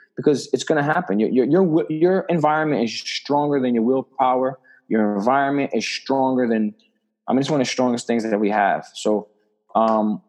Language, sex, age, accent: English, male, 20-39, American